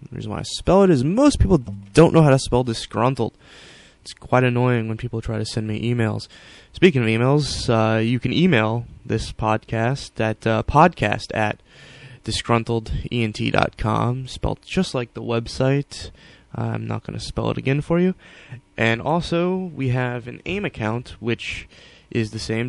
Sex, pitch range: male, 110-130 Hz